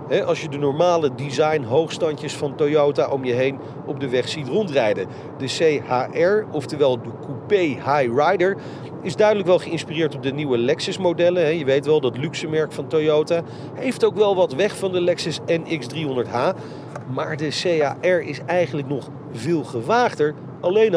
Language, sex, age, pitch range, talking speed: Dutch, male, 40-59, 145-190 Hz, 165 wpm